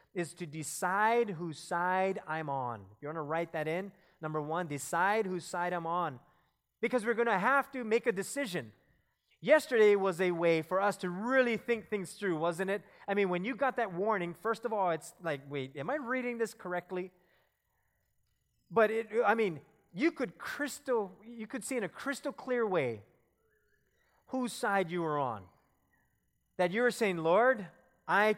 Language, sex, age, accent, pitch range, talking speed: English, male, 30-49, American, 170-235 Hz, 180 wpm